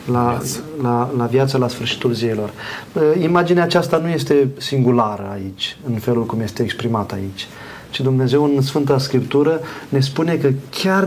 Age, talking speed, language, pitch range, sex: 30-49, 150 wpm, Romanian, 120-145 Hz, male